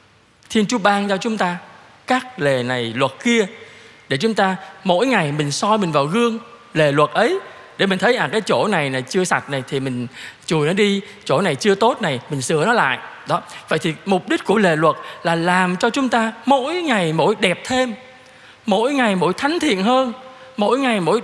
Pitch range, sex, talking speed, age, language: 170-240 Hz, male, 215 wpm, 20-39, Vietnamese